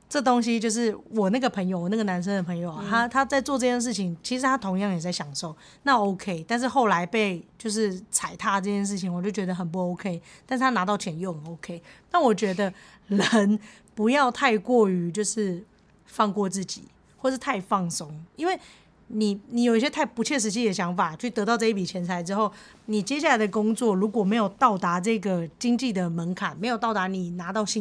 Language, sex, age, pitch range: English, female, 30-49, 185-235 Hz